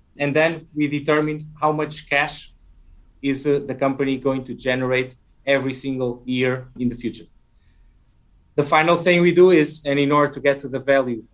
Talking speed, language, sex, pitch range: 180 wpm, English, male, 120-150 Hz